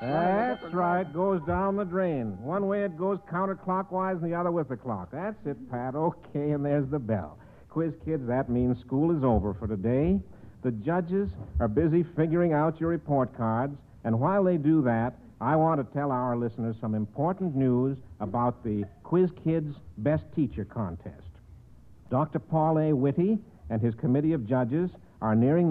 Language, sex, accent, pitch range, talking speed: English, male, American, 115-165 Hz, 175 wpm